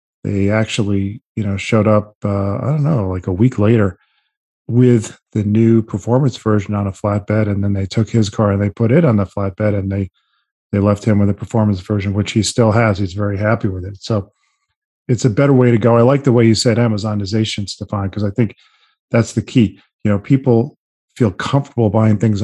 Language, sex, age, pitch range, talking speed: English, male, 40-59, 105-115 Hz, 215 wpm